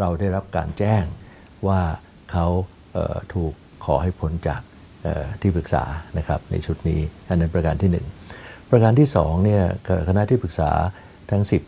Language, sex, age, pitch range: Thai, male, 60-79, 85-100 Hz